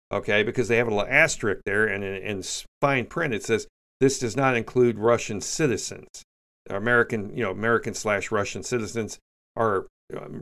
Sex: male